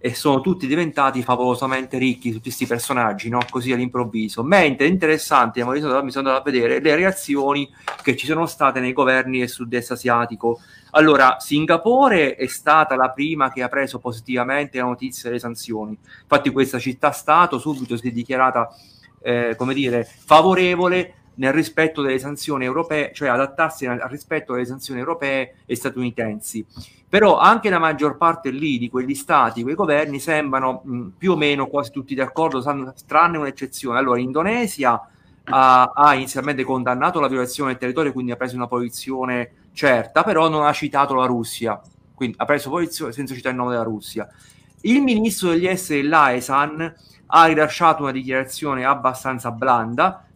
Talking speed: 160 wpm